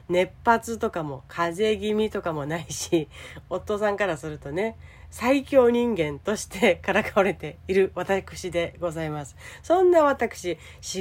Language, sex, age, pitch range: Japanese, female, 40-59, 180-270 Hz